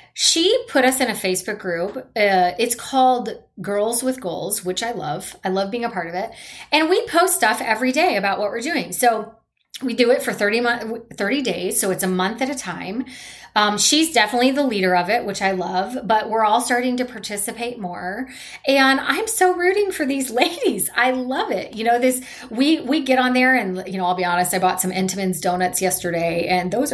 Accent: American